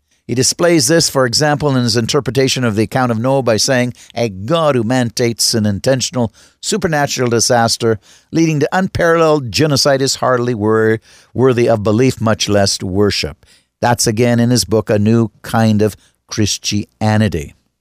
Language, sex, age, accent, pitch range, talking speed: English, male, 60-79, American, 105-130 Hz, 150 wpm